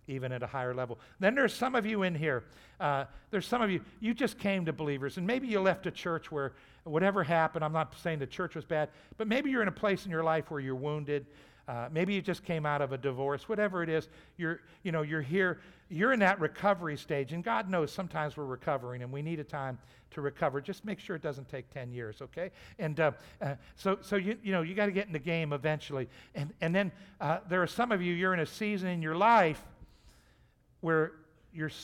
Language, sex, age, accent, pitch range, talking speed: English, male, 60-79, American, 135-185 Hz, 240 wpm